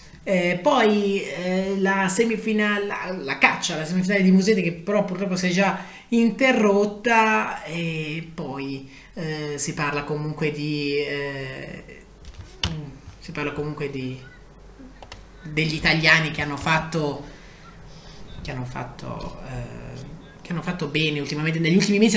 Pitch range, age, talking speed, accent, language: 150-205 Hz, 30-49, 130 wpm, native, Italian